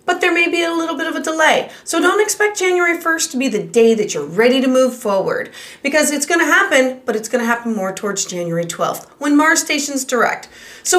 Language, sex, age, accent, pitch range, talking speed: English, female, 30-49, American, 230-325 Hz, 230 wpm